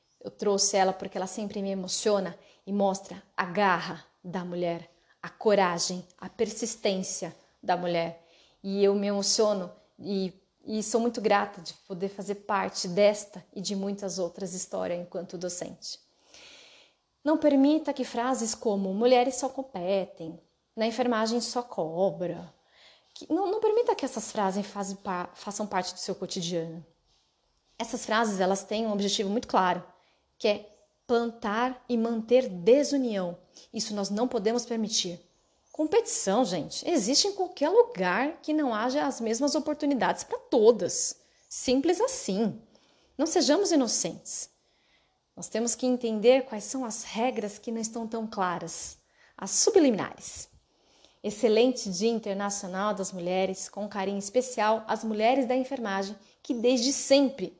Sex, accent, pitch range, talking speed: female, Brazilian, 190-250 Hz, 140 wpm